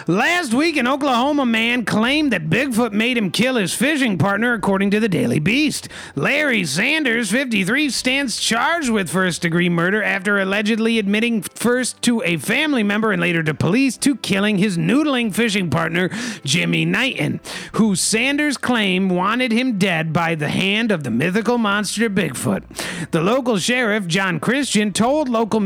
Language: English